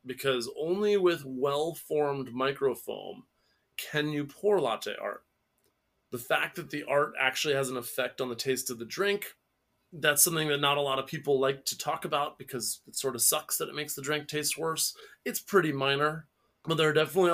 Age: 20-39